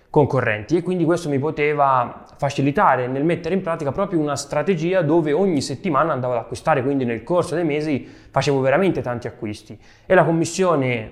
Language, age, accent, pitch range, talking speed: Italian, 20-39, native, 130-170 Hz, 165 wpm